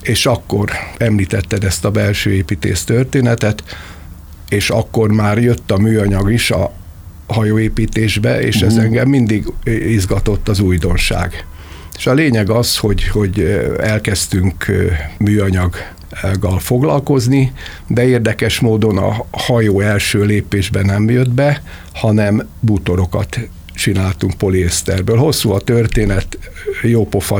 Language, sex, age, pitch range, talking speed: Hungarian, male, 60-79, 95-115 Hz, 110 wpm